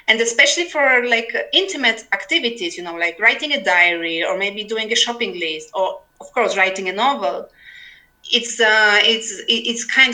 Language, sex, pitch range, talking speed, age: Dutch, female, 185-235 Hz, 170 wpm, 30-49